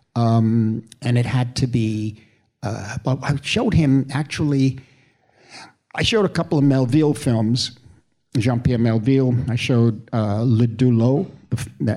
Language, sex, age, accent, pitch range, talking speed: English, male, 60-79, American, 115-135 Hz, 125 wpm